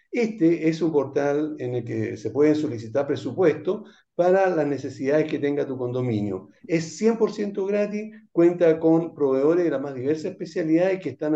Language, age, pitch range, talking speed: Spanish, 60-79, 140-185 Hz, 165 wpm